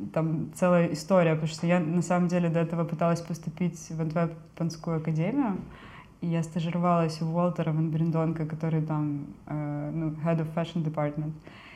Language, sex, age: Russian, female, 20-39